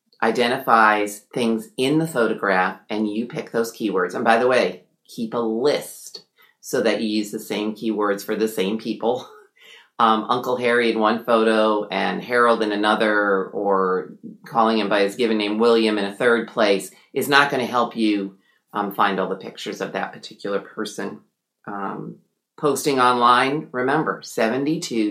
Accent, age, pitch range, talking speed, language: American, 40-59, 105-125 Hz, 165 wpm, English